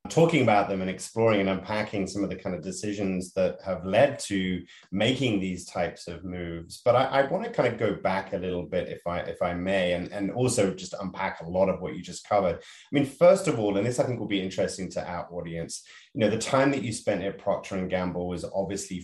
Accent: British